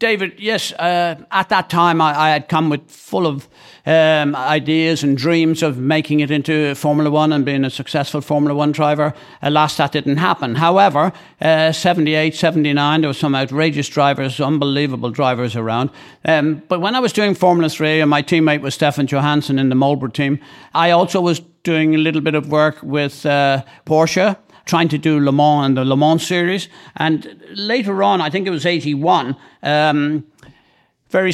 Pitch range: 140-160 Hz